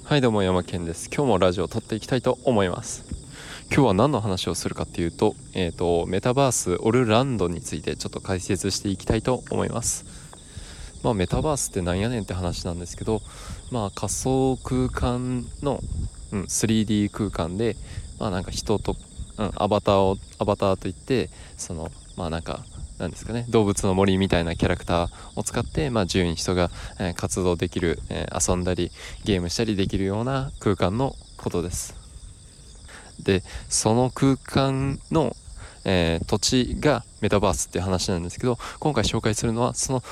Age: 20-39